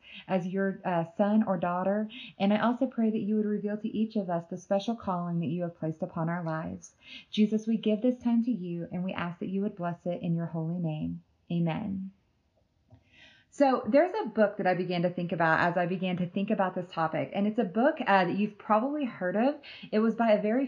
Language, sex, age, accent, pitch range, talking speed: English, female, 30-49, American, 180-225 Hz, 235 wpm